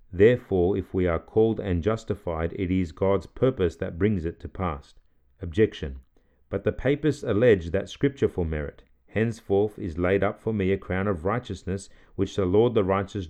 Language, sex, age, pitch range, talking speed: English, male, 40-59, 85-105 Hz, 180 wpm